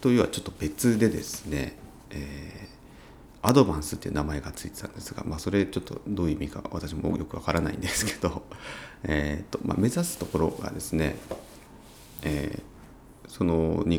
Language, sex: Japanese, male